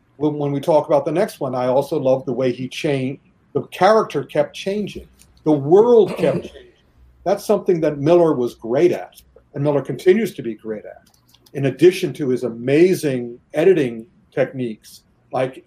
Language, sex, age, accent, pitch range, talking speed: English, male, 50-69, American, 135-180 Hz, 170 wpm